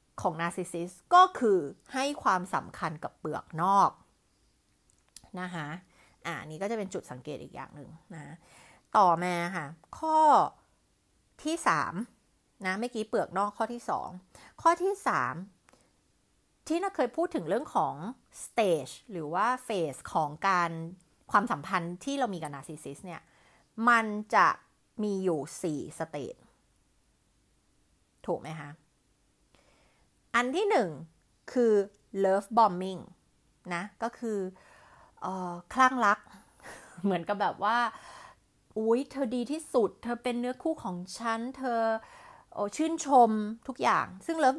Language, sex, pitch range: Thai, female, 175-250 Hz